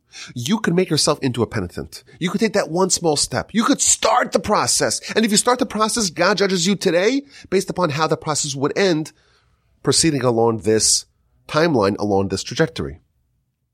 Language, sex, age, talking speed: English, male, 30-49, 190 wpm